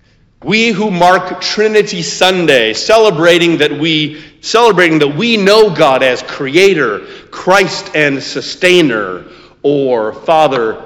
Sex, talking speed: male, 110 wpm